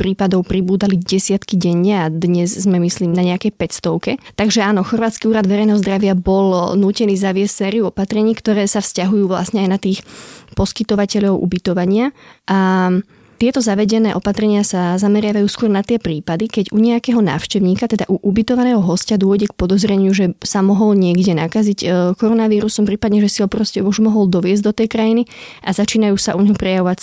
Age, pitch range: 20-39, 185-215 Hz